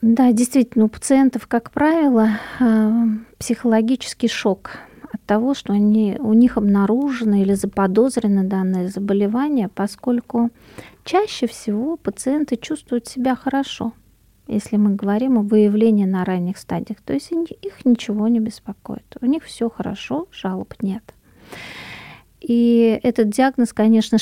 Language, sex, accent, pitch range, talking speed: Russian, female, native, 205-250 Hz, 120 wpm